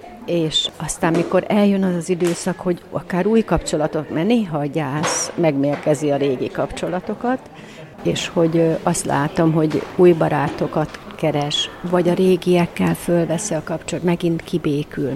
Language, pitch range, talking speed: Hungarian, 155-185 Hz, 140 wpm